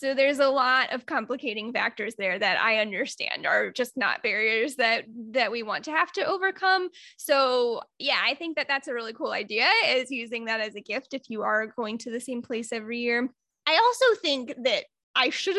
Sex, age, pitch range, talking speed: female, 10-29, 230-355 Hz, 210 wpm